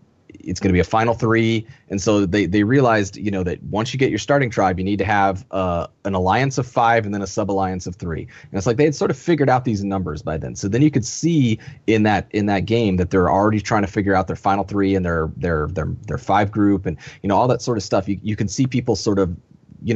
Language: English